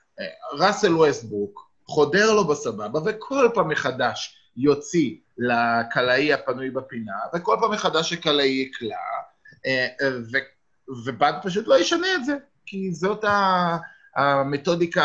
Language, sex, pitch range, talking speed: Hebrew, male, 120-165 Hz, 105 wpm